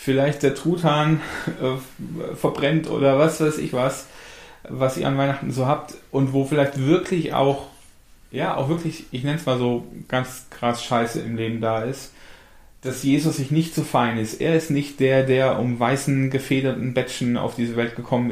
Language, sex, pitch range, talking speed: German, male, 115-140 Hz, 185 wpm